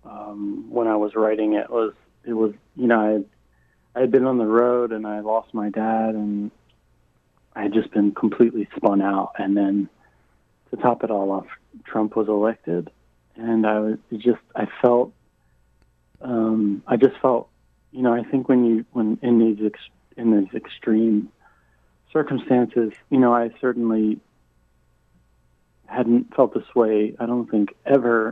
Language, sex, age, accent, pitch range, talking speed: English, male, 30-49, American, 100-115 Hz, 160 wpm